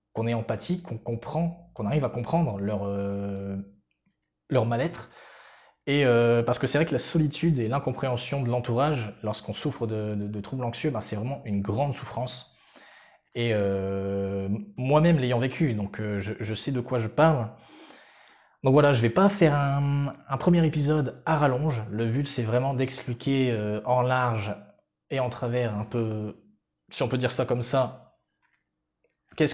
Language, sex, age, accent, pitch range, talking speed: French, male, 20-39, French, 110-140 Hz, 175 wpm